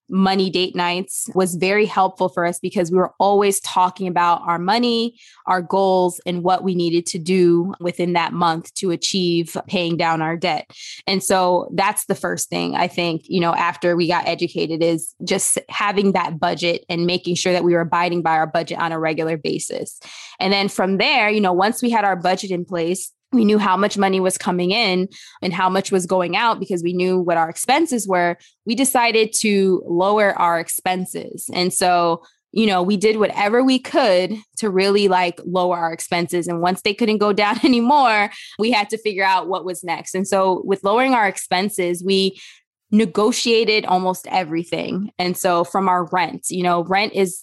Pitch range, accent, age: 175-205 Hz, American, 20-39